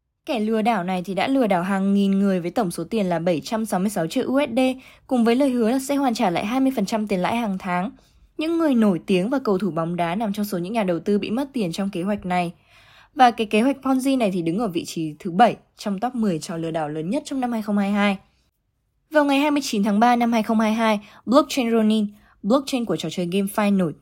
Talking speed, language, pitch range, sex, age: 240 wpm, Vietnamese, 185-245 Hz, female, 10-29